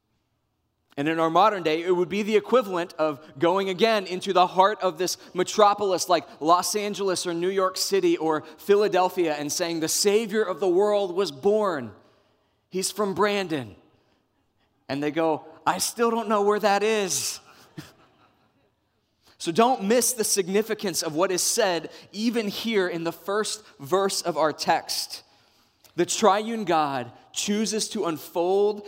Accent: American